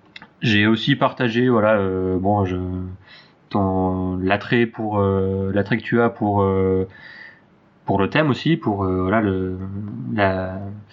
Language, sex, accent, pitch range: French, male, French, 95-115 Hz